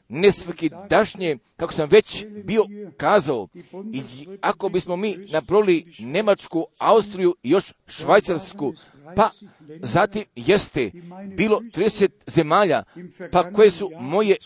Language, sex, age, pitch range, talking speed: Croatian, male, 50-69, 165-205 Hz, 110 wpm